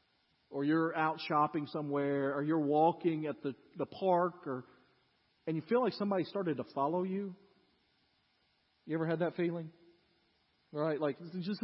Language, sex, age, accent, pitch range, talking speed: English, male, 40-59, American, 150-205 Hz, 160 wpm